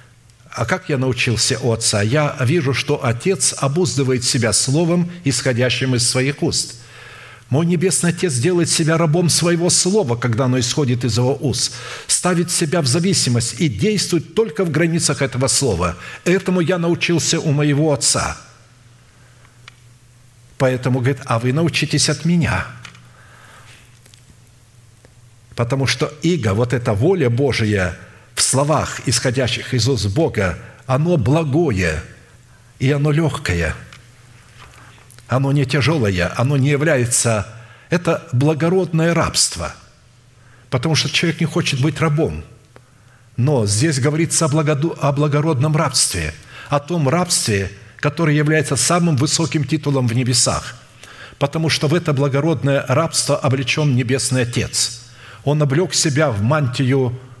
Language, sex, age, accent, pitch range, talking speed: Russian, male, 60-79, native, 120-155 Hz, 125 wpm